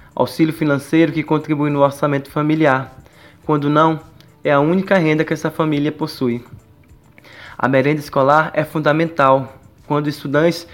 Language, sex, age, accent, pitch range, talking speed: Portuguese, male, 20-39, Brazilian, 135-160 Hz, 135 wpm